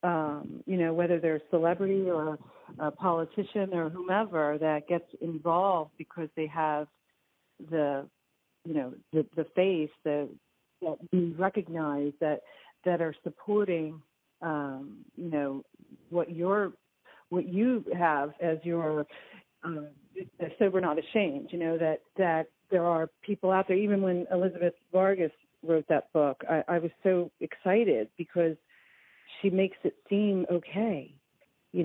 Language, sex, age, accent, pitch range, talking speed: English, female, 50-69, American, 160-190 Hz, 140 wpm